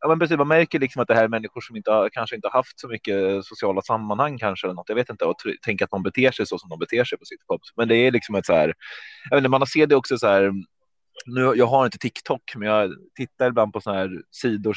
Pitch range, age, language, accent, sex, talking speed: 105-140 Hz, 20-39, Swedish, native, male, 270 wpm